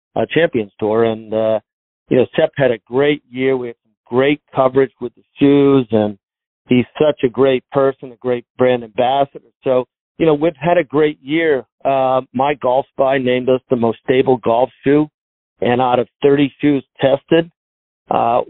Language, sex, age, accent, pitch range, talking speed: English, male, 40-59, American, 120-145 Hz, 180 wpm